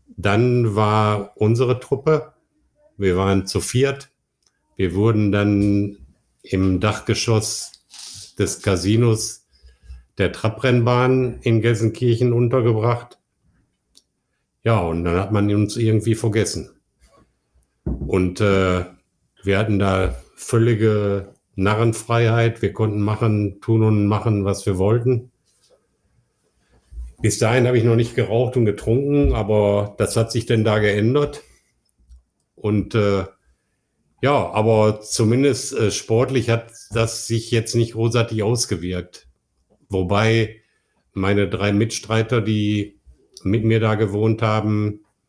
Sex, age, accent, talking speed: male, 50-69, German, 110 wpm